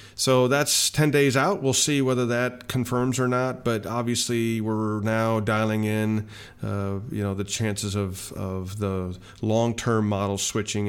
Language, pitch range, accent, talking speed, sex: English, 100-120 Hz, American, 160 wpm, male